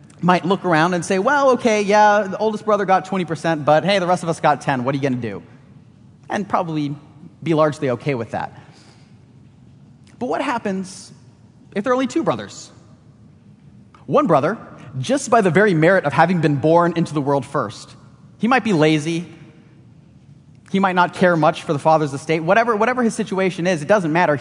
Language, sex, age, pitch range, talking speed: English, male, 30-49, 135-185 Hz, 195 wpm